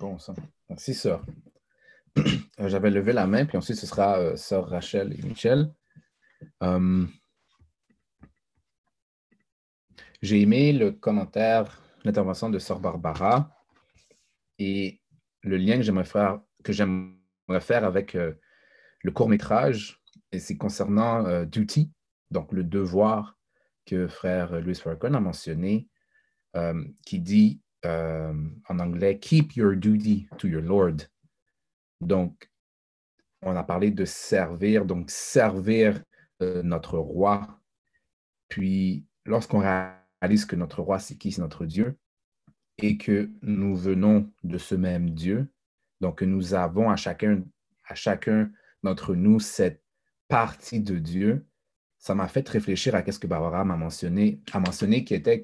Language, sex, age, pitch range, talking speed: French, male, 30-49, 90-110 Hz, 140 wpm